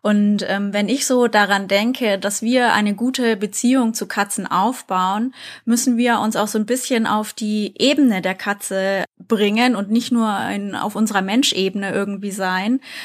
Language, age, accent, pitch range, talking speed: German, 20-39, German, 200-245 Hz, 170 wpm